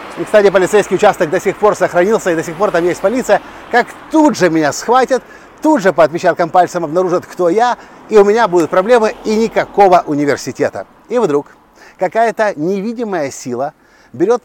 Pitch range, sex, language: 180-225 Hz, male, Russian